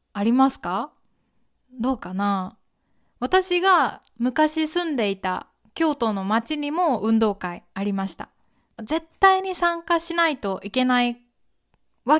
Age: 20-39